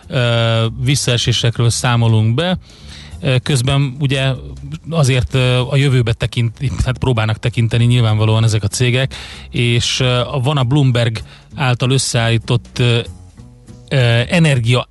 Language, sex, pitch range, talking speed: Hungarian, male, 115-130 Hz, 85 wpm